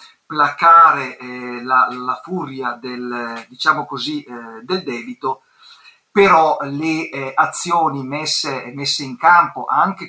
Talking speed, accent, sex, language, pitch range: 105 wpm, native, male, Italian, 135-185 Hz